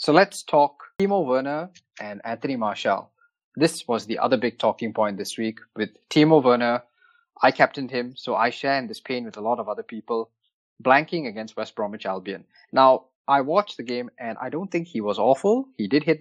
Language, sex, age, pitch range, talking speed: English, male, 20-39, 115-150 Hz, 205 wpm